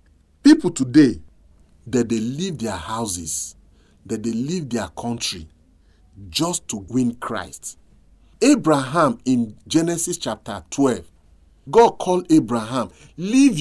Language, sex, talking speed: English, male, 110 wpm